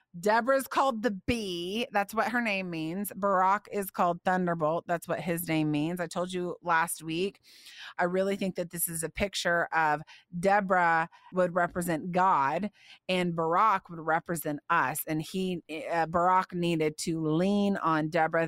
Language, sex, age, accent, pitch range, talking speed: English, female, 30-49, American, 170-275 Hz, 160 wpm